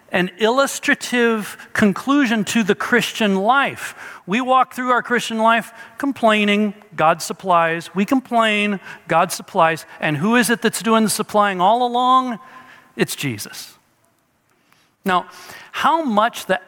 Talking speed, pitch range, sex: 130 wpm, 155-215 Hz, male